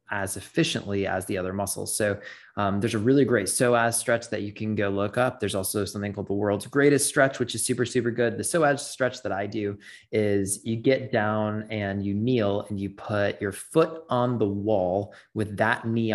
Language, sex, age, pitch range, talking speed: English, male, 20-39, 100-120 Hz, 210 wpm